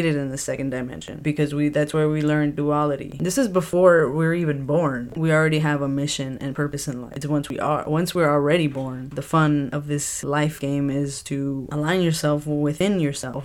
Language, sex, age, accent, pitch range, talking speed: English, female, 10-29, American, 140-160 Hz, 205 wpm